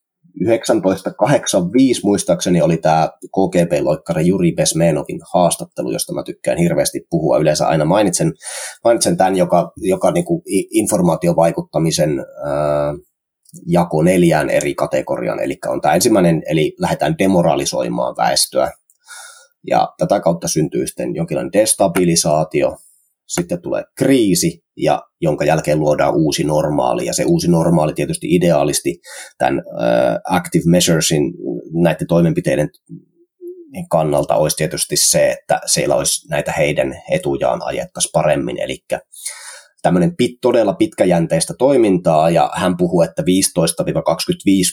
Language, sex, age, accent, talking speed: Finnish, male, 20-39, native, 115 wpm